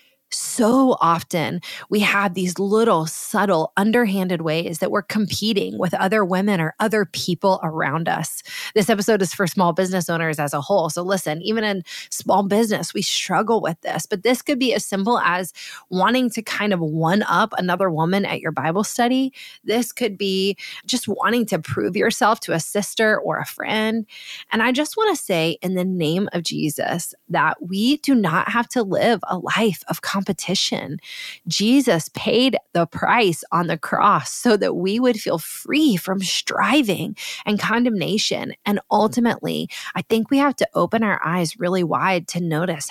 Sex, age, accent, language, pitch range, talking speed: female, 20-39, American, English, 165-225 Hz, 175 wpm